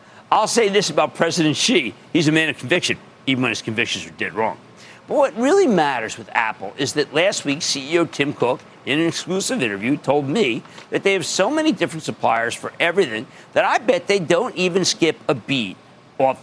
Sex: male